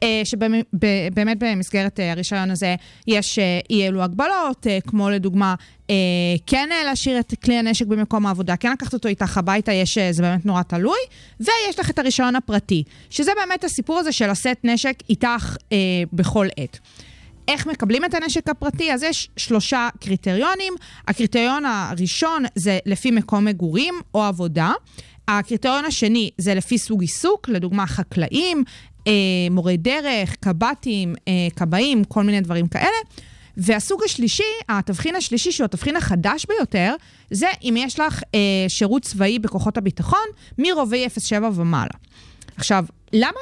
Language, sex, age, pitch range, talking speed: Hebrew, female, 30-49, 185-255 Hz, 140 wpm